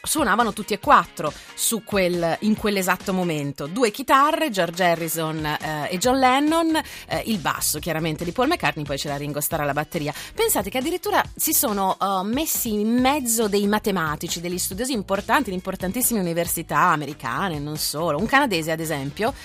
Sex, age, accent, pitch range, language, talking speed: female, 30-49, native, 170-230 Hz, Italian, 165 wpm